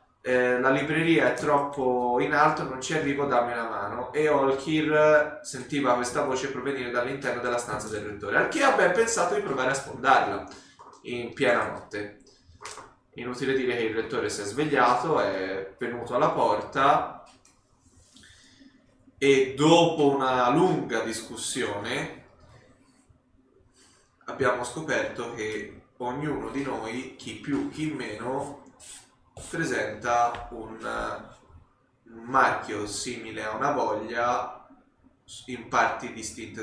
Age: 20-39